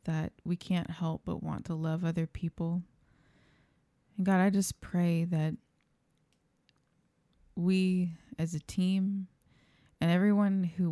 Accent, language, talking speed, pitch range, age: American, English, 125 wpm, 170-190 Hz, 20-39